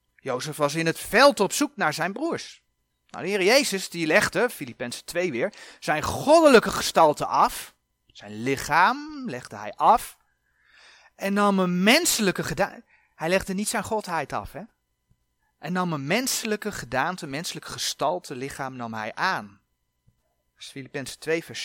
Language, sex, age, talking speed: Dutch, male, 30-49, 150 wpm